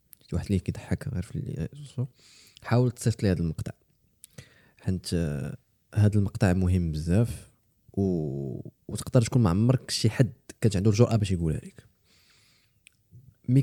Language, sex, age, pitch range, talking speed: Arabic, male, 20-39, 100-125 Hz, 120 wpm